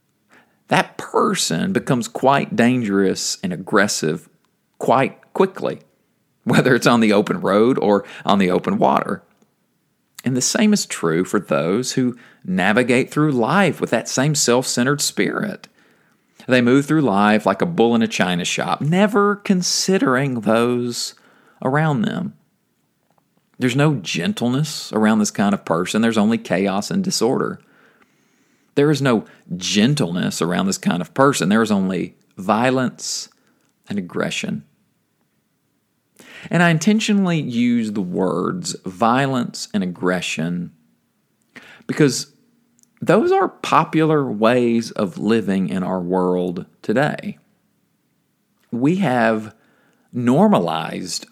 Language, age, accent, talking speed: English, 40-59, American, 120 wpm